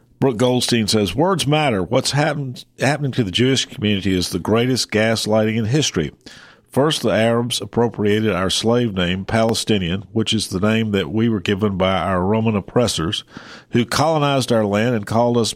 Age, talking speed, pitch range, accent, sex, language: 50-69, 170 wpm, 105-125 Hz, American, male, English